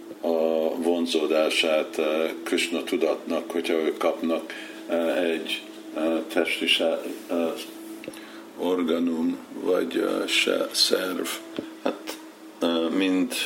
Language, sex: Hungarian, male